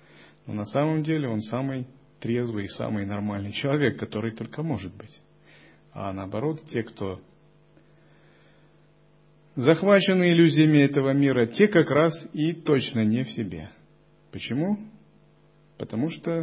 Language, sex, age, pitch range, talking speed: Russian, male, 30-49, 110-160 Hz, 120 wpm